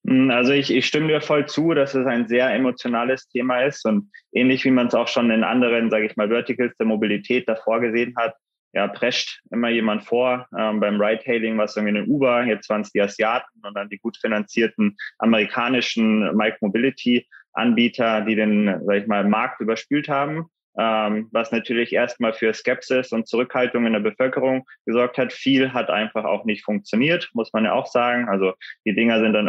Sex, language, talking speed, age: male, German, 195 wpm, 20-39